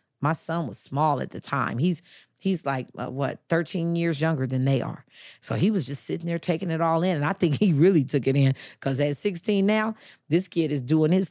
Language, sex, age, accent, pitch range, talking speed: English, female, 40-59, American, 135-175 Hz, 235 wpm